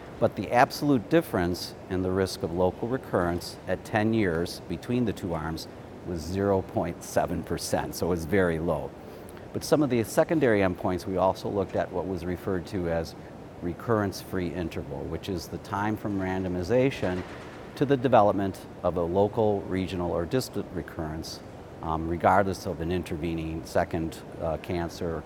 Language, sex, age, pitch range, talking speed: Dutch, male, 50-69, 85-110 Hz, 155 wpm